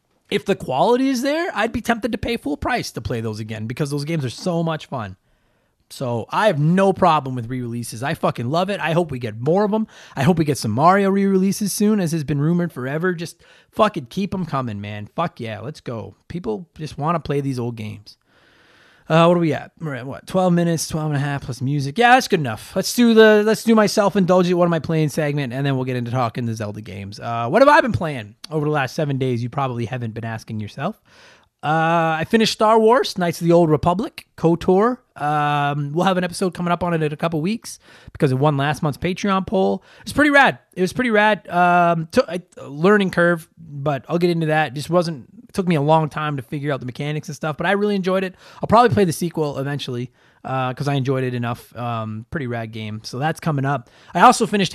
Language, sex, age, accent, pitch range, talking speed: English, male, 30-49, American, 130-190 Hz, 240 wpm